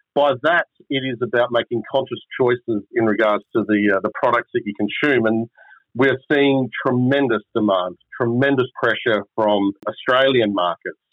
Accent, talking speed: Australian, 150 wpm